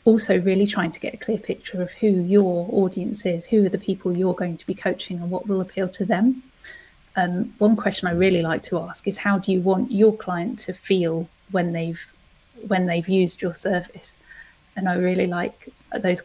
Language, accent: English, British